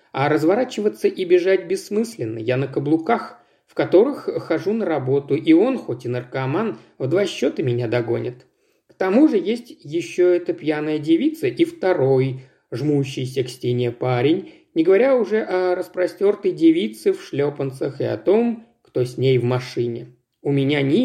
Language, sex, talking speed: Russian, male, 160 wpm